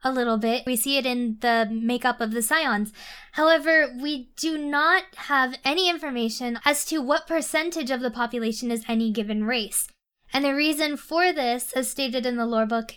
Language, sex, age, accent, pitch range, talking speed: English, female, 10-29, American, 230-290 Hz, 190 wpm